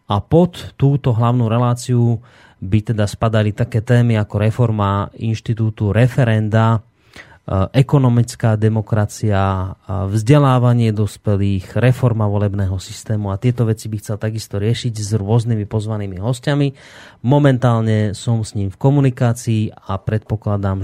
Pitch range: 105-125 Hz